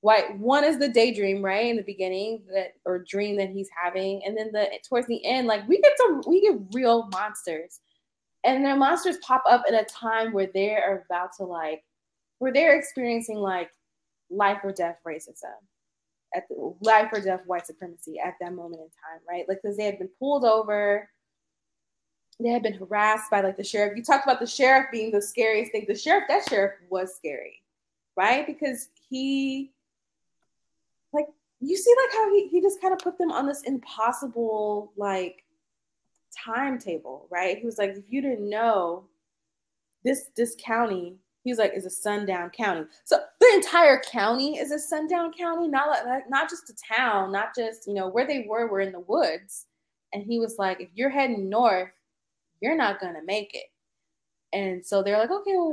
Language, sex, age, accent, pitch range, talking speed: English, female, 20-39, American, 195-275 Hz, 185 wpm